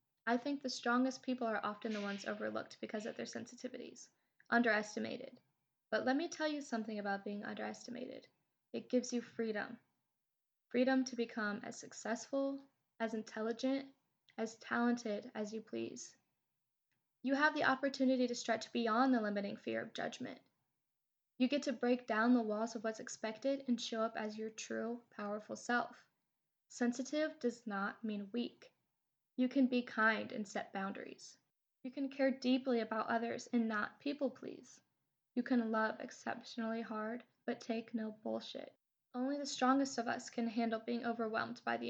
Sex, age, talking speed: female, 10-29, 160 wpm